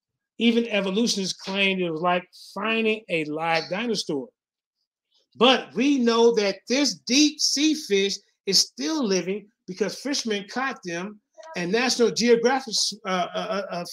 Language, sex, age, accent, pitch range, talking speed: English, male, 30-49, American, 195-265 Hz, 135 wpm